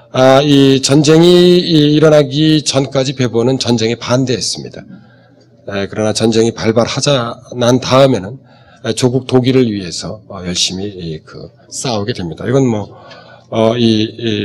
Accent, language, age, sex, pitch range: native, Korean, 40-59, male, 115-145 Hz